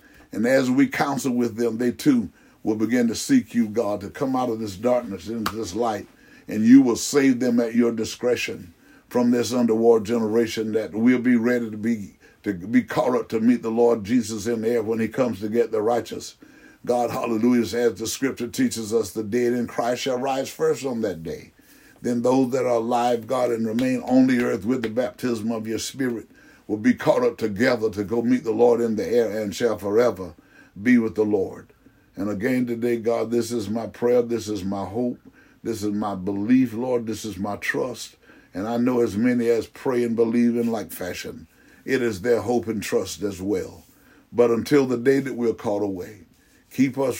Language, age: English, 60-79